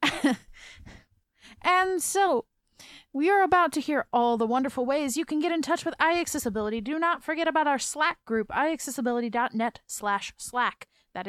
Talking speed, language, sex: 155 wpm, English, female